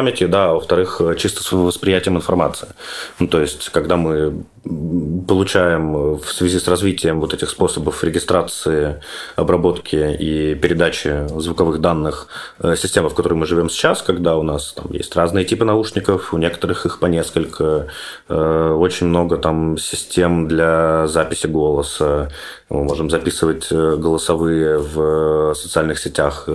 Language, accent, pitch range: Russian, native, 80-95 Hz